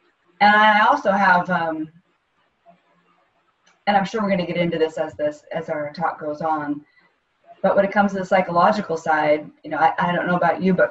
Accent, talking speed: American, 205 wpm